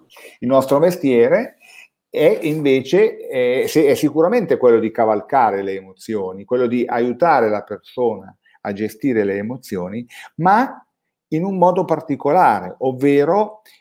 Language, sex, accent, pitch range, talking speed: Italian, male, native, 110-165 Hz, 115 wpm